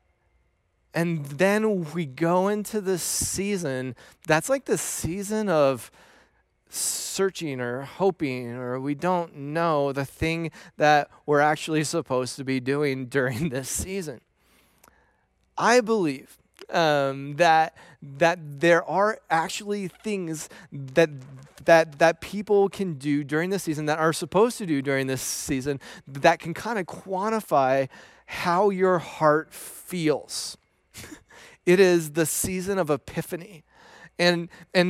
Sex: male